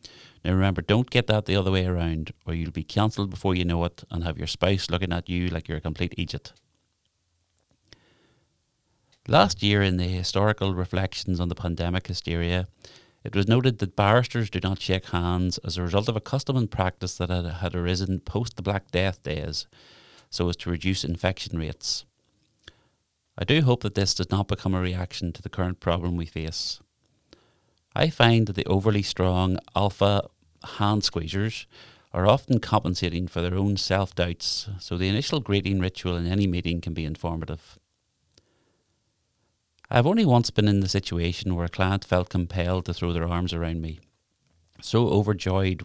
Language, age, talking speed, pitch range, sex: English, 30-49, 175 wpm, 85-105 Hz, male